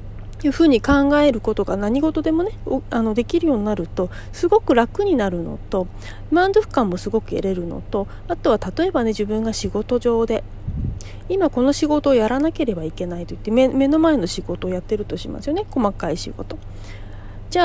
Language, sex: Japanese, female